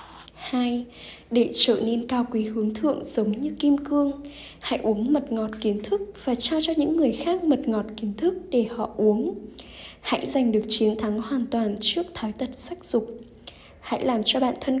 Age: 10-29